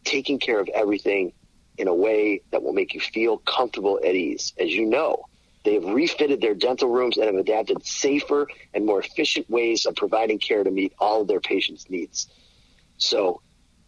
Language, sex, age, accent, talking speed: English, male, 40-59, American, 185 wpm